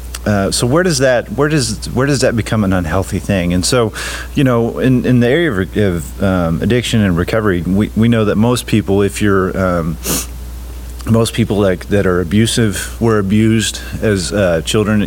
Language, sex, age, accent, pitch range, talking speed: English, male, 40-59, American, 90-110 Hz, 195 wpm